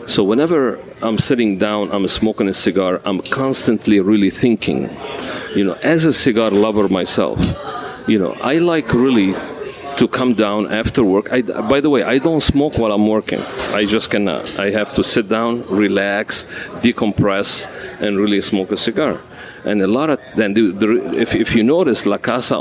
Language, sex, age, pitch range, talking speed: English, male, 40-59, 105-120 Hz, 180 wpm